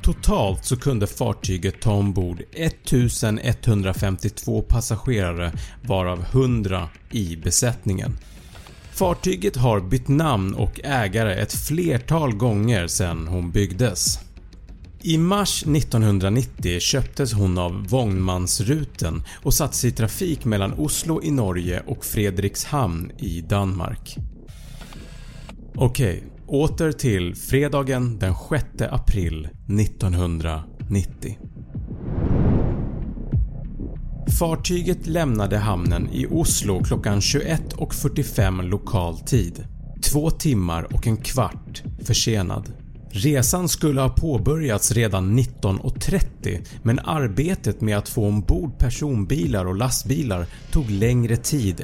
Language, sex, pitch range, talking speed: Swedish, male, 95-135 Hz, 100 wpm